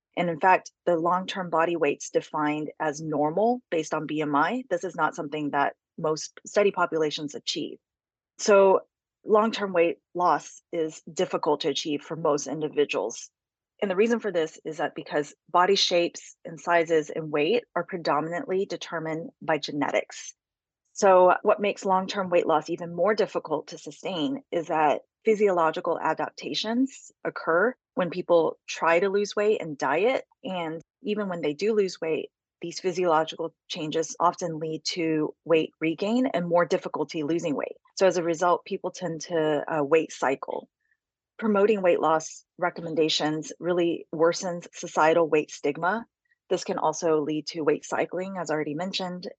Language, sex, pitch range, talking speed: English, female, 155-190 Hz, 150 wpm